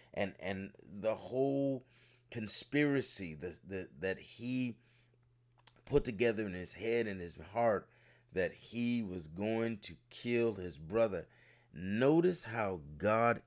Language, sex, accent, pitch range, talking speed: English, male, American, 100-120 Hz, 125 wpm